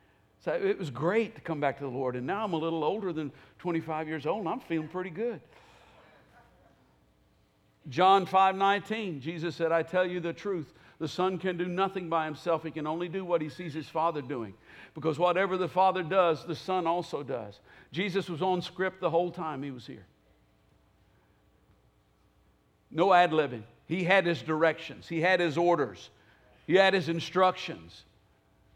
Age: 60-79